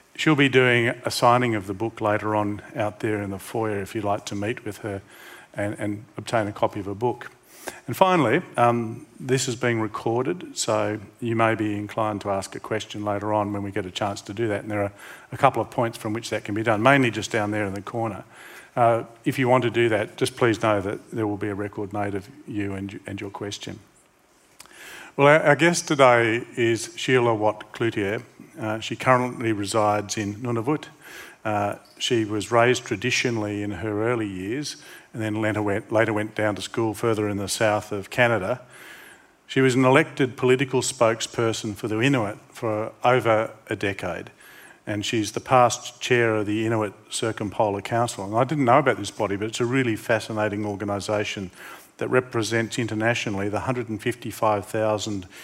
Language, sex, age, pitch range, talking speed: English, male, 50-69, 105-120 Hz, 190 wpm